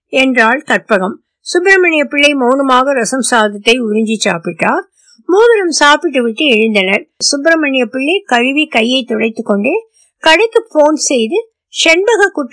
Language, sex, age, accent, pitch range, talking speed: Tamil, female, 60-79, native, 220-285 Hz, 80 wpm